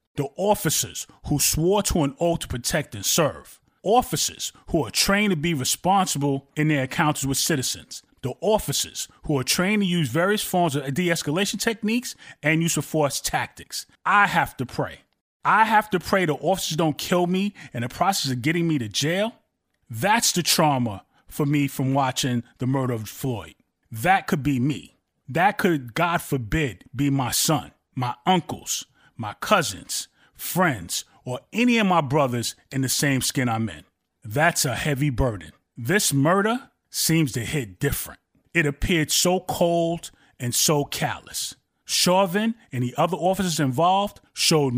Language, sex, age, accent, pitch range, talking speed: English, male, 30-49, American, 135-180 Hz, 165 wpm